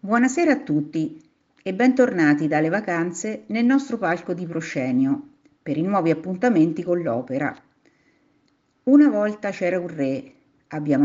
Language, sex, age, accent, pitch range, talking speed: Italian, female, 50-69, native, 160-260 Hz, 130 wpm